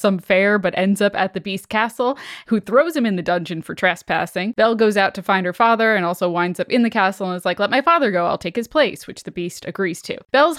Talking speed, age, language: 270 wpm, 10-29, English